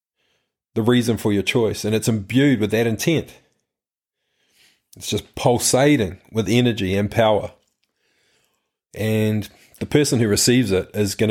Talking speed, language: 140 wpm, English